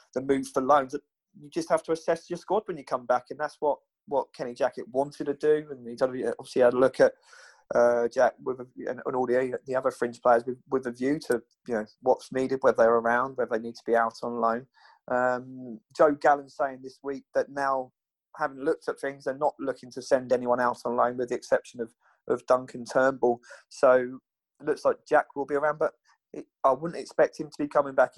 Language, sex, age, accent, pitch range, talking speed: English, male, 20-39, British, 125-155 Hz, 230 wpm